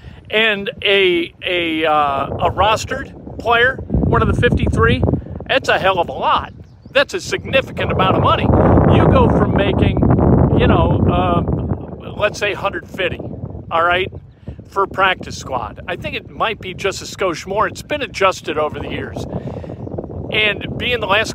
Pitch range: 175-225 Hz